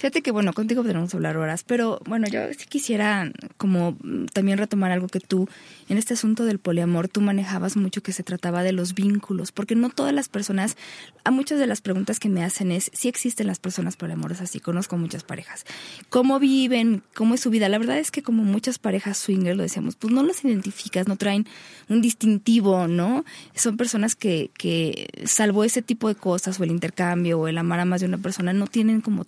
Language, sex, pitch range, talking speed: Spanish, female, 185-225 Hz, 210 wpm